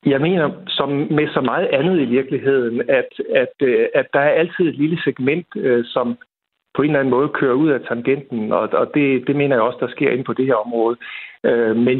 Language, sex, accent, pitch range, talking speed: Danish, male, native, 120-155 Hz, 210 wpm